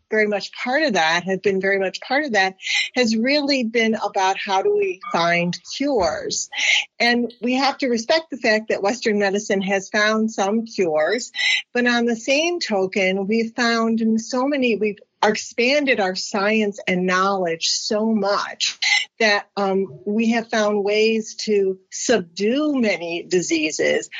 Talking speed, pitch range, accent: 155 wpm, 190-245 Hz, American